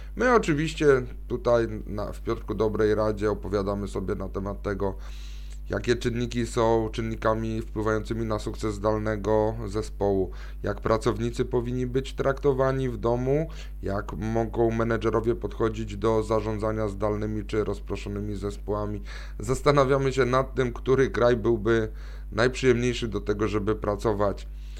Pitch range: 105-125 Hz